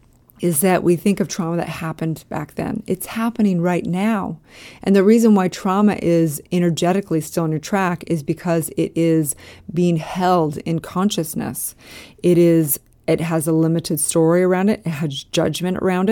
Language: English